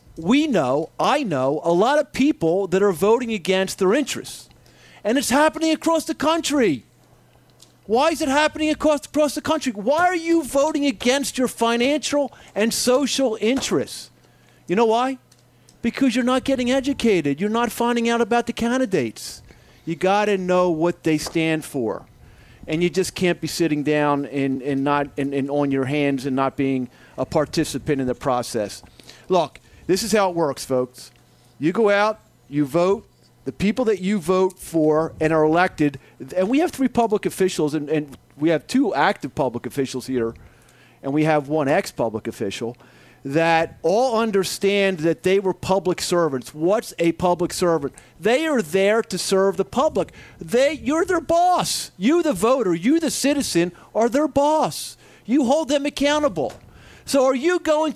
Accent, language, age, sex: American, English, 40-59, male